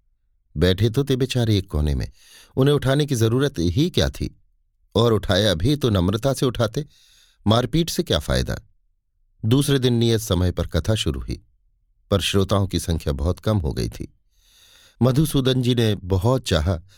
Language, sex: Hindi, male